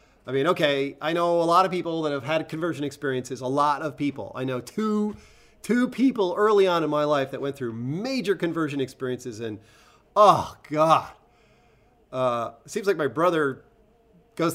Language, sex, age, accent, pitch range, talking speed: English, male, 40-59, American, 135-205 Hz, 175 wpm